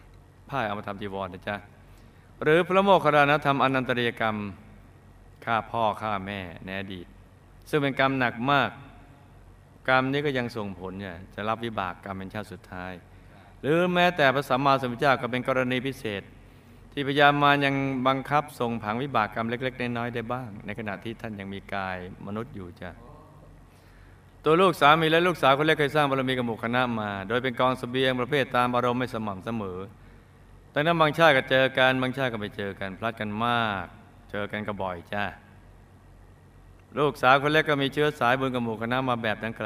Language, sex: Thai, male